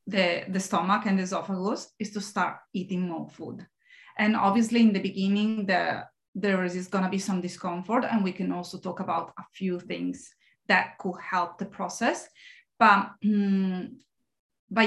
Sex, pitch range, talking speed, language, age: female, 185-225 Hz, 170 wpm, English, 30-49